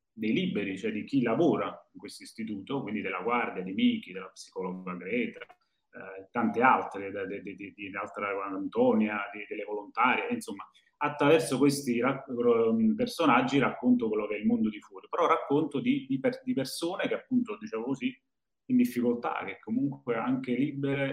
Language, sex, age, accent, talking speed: Italian, male, 30-49, native, 150 wpm